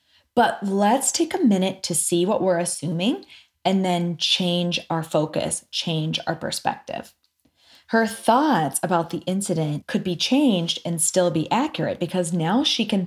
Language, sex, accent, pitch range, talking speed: English, female, American, 170-225 Hz, 155 wpm